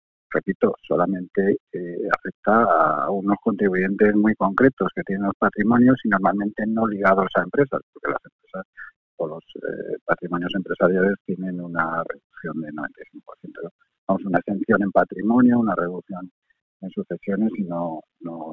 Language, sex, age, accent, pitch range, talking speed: Spanish, male, 50-69, Spanish, 95-120 Hz, 145 wpm